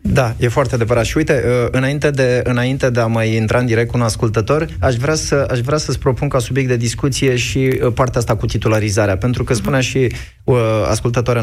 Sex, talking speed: male, 205 wpm